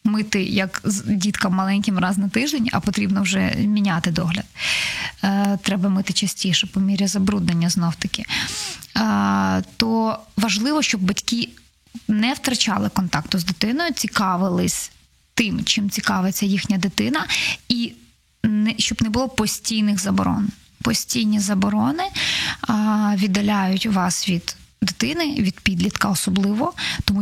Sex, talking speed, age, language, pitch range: female, 115 wpm, 20-39, Ukrainian, 195-225 Hz